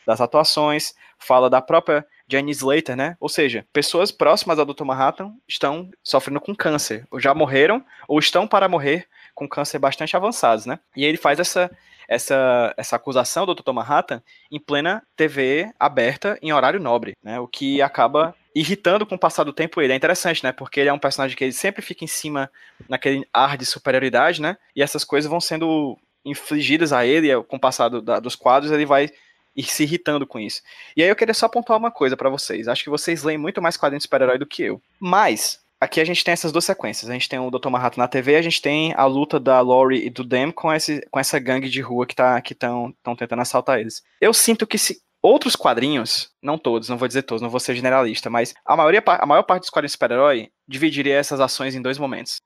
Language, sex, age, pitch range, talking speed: Portuguese, male, 20-39, 130-160 Hz, 220 wpm